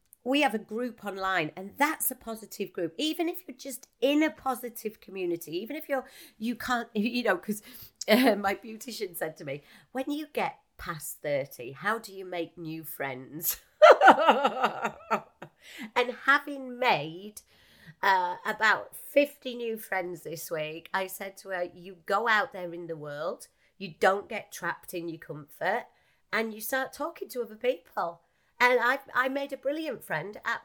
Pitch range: 190-255 Hz